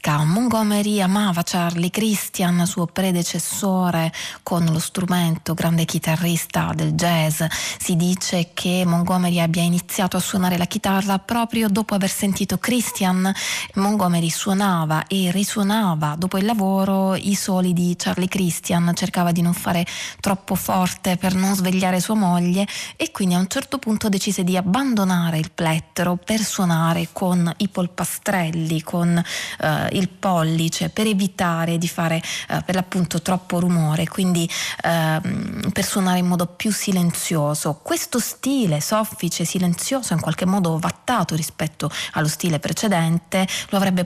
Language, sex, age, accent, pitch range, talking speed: Italian, female, 20-39, native, 170-195 Hz, 140 wpm